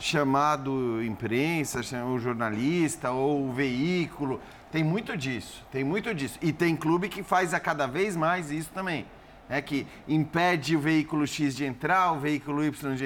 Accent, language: Brazilian, Portuguese